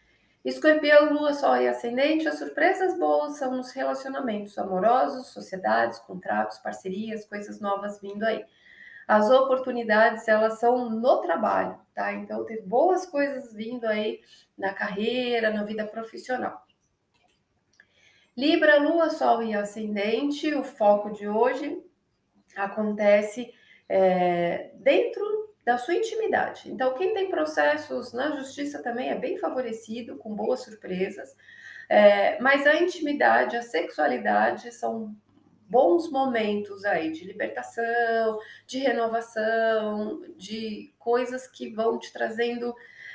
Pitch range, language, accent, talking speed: 205-270 Hz, Portuguese, Brazilian, 120 wpm